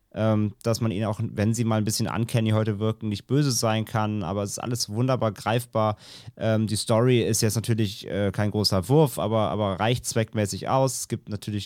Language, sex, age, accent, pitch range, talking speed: German, male, 30-49, German, 105-120 Hz, 215 wpm